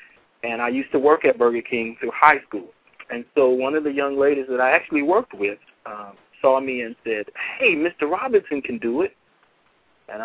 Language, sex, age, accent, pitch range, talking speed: English, male, 40-59, American, 130-190 Hz, 205 wpm